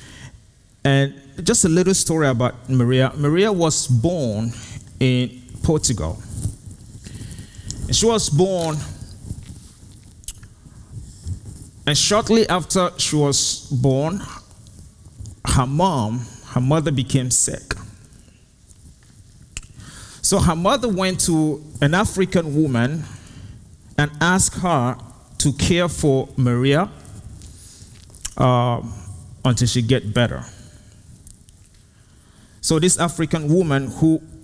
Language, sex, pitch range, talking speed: English, male, 105-155 Hz, 90 wpm